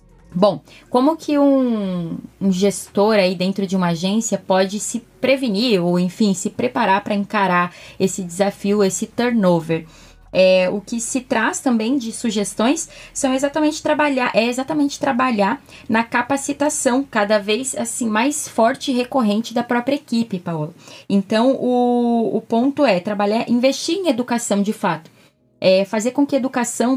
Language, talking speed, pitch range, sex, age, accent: Portuguese, 150 wpm, 195-250 Hz, female, 20-39, Brazilian